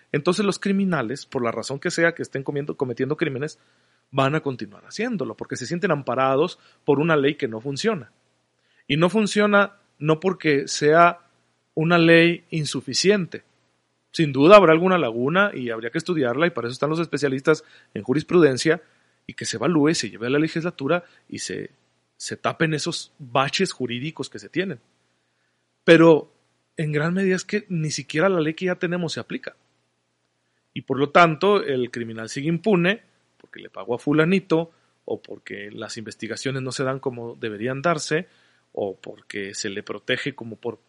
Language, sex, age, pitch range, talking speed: Spanish, male, 40-59, 115-165 Hz, 170 wpm